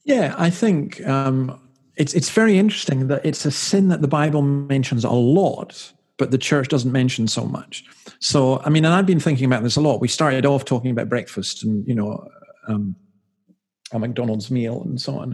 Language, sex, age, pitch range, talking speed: English, male, 50-69, 115-145 Hz, 205 wpm